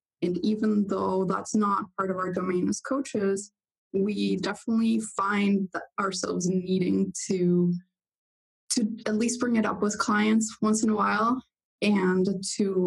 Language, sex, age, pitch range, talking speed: English, female, 20-39, 190-220 Hz, 145 wpm